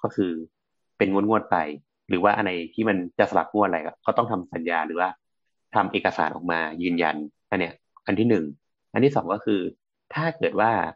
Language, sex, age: Thai, male, 30-49